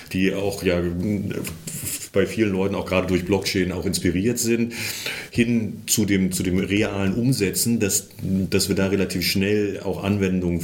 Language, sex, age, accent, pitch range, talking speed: German, male, 40-59, German, 90-110 Hz, 145 wpm